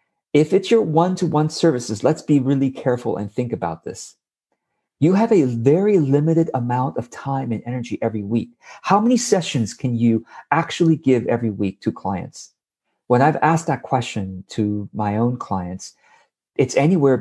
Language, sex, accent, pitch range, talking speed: English, male, American, 110-150 Hz, 165 wpm